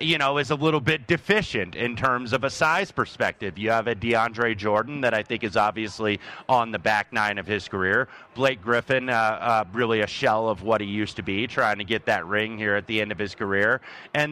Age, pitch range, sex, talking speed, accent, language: 30-49, 105-130 Hz, male, 235 wpm, American, English